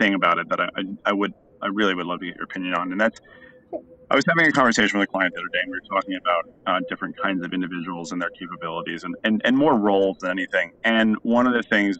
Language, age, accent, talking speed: English, 30-49, American, 270 wpm